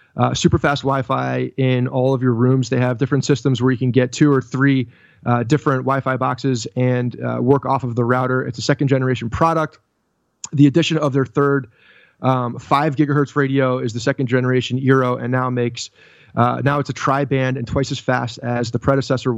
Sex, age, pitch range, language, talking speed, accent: male, 30-49, 125-140 Hz, English, 200 wpm, American